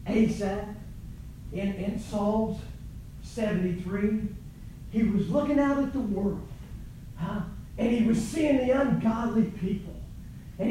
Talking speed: 120 wpm